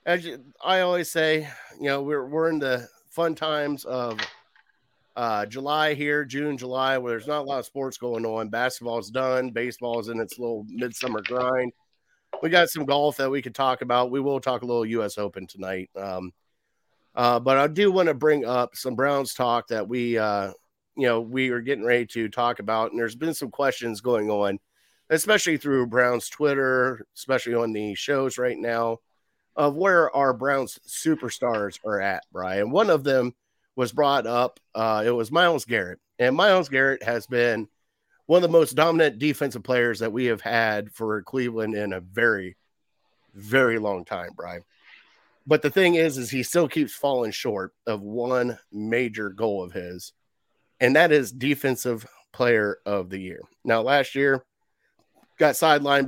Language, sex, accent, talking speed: English, male, American, 180 wpm